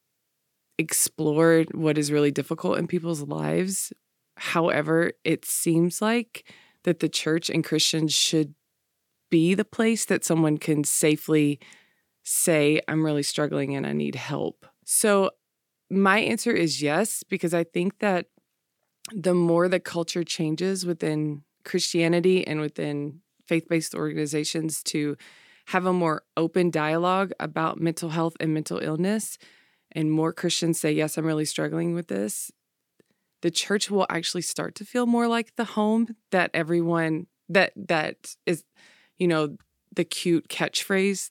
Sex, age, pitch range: female, 20-39, 155-180 Hz